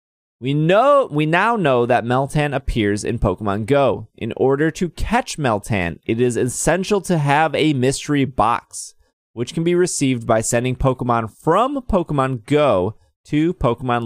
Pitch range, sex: 110-150 Hz, male